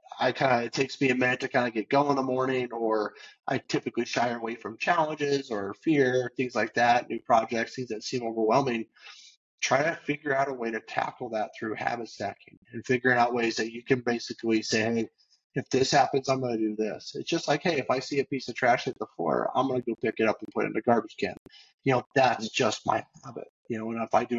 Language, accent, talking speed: English, American, 255 wpm